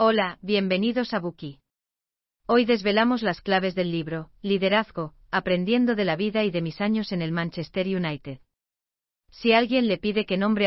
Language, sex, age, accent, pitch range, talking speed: Spanish, female, 40-59, Spanish, 170-210 Hz, 165 wpm